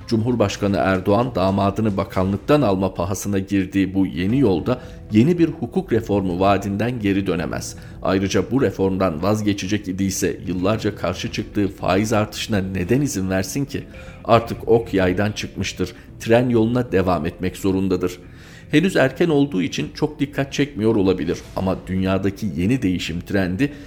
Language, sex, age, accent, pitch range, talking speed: Turkish, male, 40-59, native, 95-115 Hz, 135 wpm